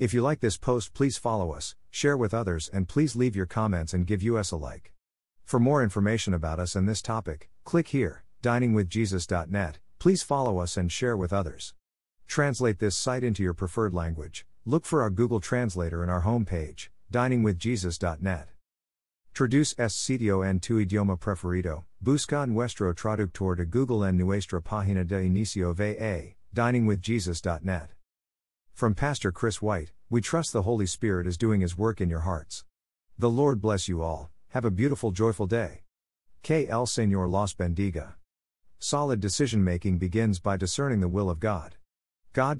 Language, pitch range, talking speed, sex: English, 90-115 Hz, 165 wpm, male